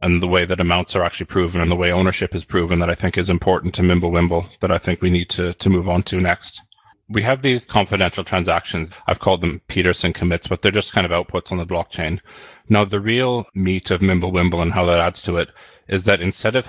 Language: English